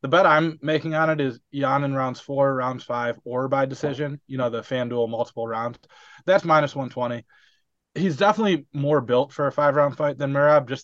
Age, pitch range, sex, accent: 20-39, 115-145 Hz, male, American